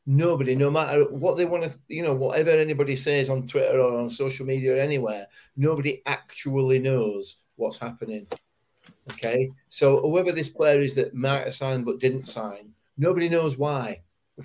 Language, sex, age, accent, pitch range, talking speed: English, male, 40-59, British, 115-140 Hz, 175 wpm